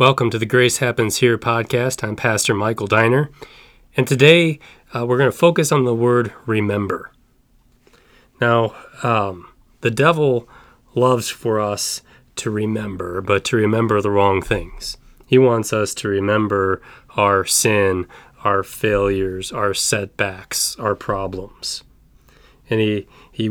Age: 30-49